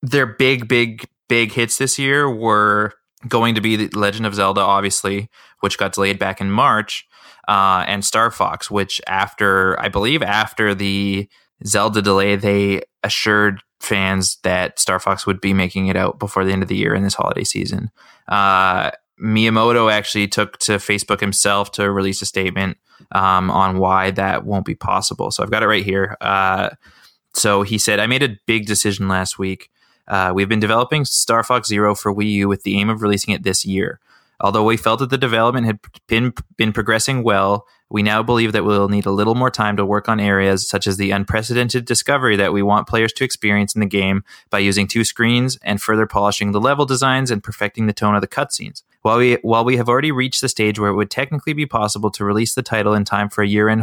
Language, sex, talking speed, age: English, male, 210 wpm, 20-39